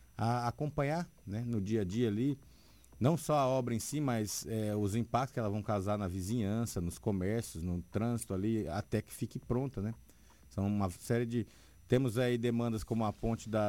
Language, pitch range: Portuguese, 100-115 Hz